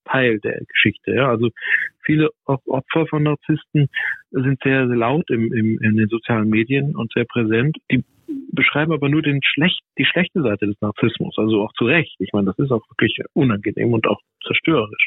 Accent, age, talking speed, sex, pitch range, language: German, 50-69, 185 wpm, male, 115-150 Hz, German